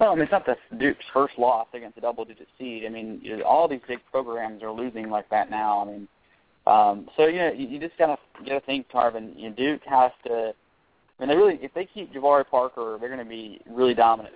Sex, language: male, English